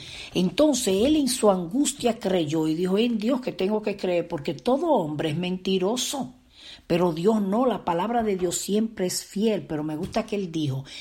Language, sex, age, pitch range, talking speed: Spanish, female, 50-69, 135-195 Hz, 190 wpm